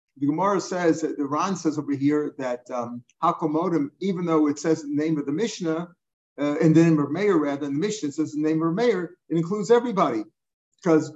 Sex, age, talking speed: male, 50-69, 215 wpm